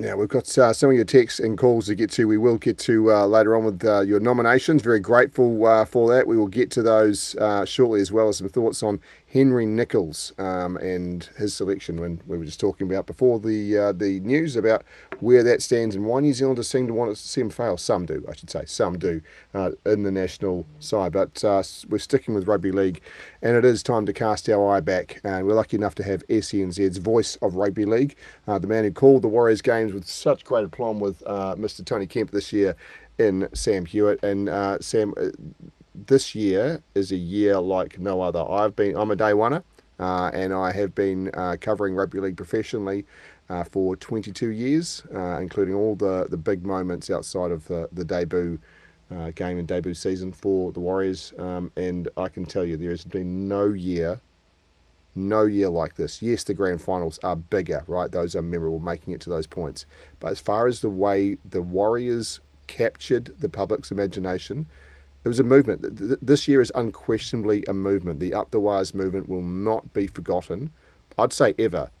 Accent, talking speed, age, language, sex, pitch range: Australian, 210 wpm, 40-59, English, male, 90-110 Hz